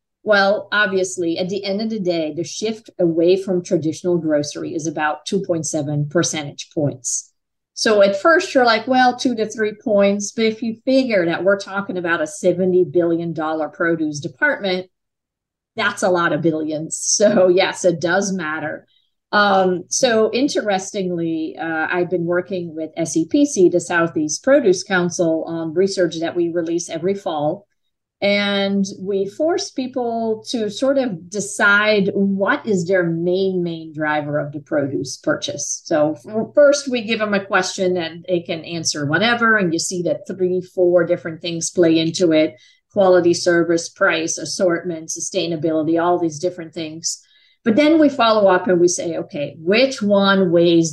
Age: 40-59